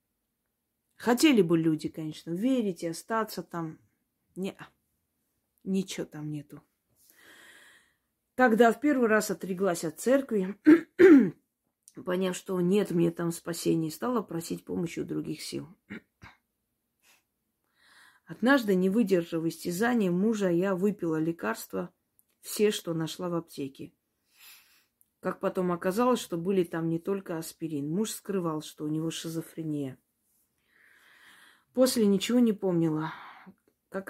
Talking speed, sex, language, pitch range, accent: 115 wpm, female, Russian, 160-205 Hz, native